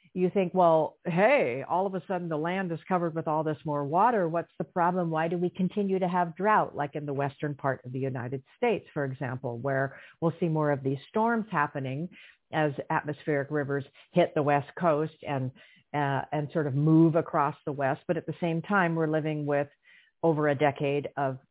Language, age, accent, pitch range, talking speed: English, 50-69, American, 150-185 Hz, 205 wpm